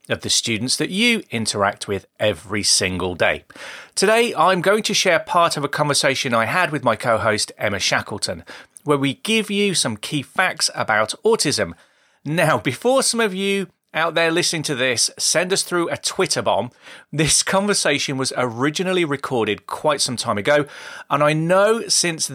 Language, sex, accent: English, male, British